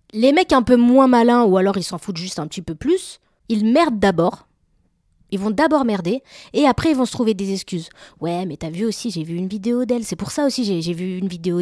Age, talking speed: 20-39, 260 wpm